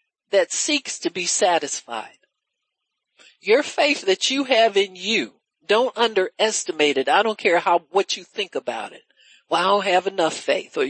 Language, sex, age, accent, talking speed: English, male, 60-79, American, 185 wpm